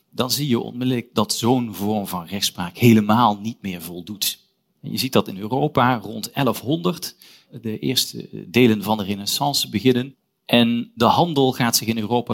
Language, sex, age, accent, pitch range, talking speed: Dutch, male, 40-59, Dutch, 110-150 Hz, 165 wpm